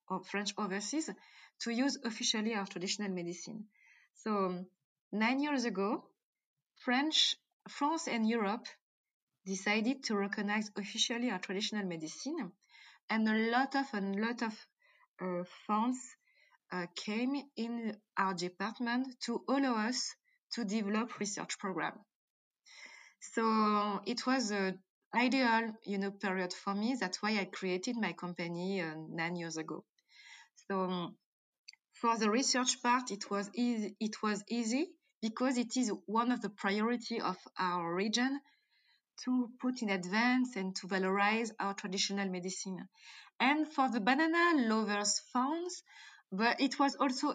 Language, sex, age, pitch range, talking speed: English, female, 20-39, 195-250 Hz, 135 wpm